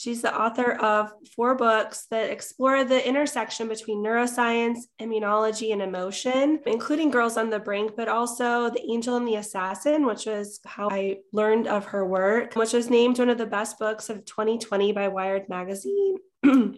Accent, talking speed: American, 170 wpm